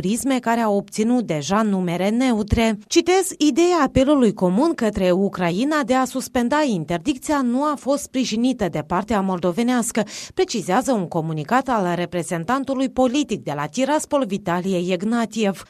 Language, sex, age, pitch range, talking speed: Romanian, female, 30-49, 195-280 Hz, 130 wpm